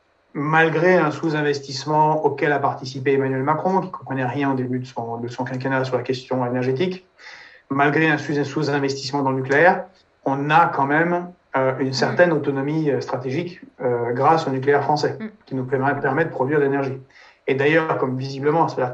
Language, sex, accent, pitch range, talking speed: French, male, French, 130-155 Hz, 175 wpm